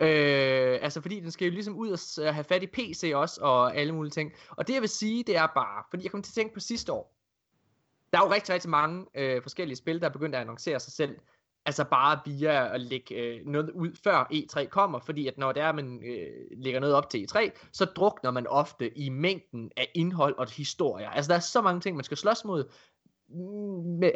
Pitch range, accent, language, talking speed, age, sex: 130-180 Hz, native, Danish, 240 wpm, 20-39, male